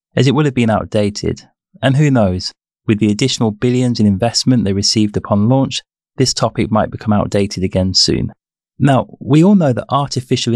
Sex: male